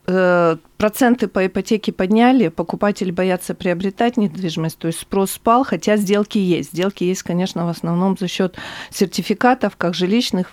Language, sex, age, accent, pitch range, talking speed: Russian, female, 40-59, native, 170-220 Hz, 140 wpm